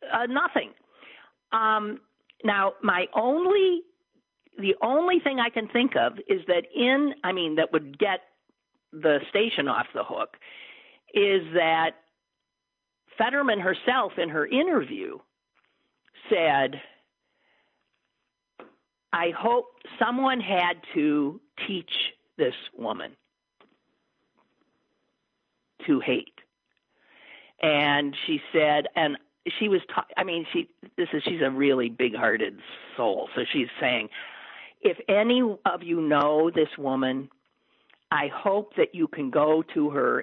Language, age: English, 50-69